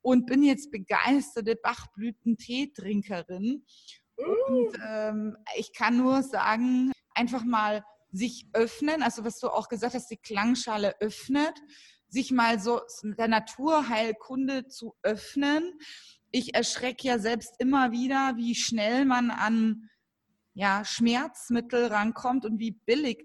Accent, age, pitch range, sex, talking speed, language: German, 30-49, 215-255 Hz, female, 125 wpm, German